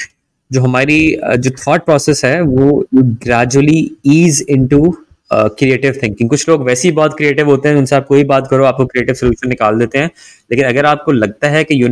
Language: Hindi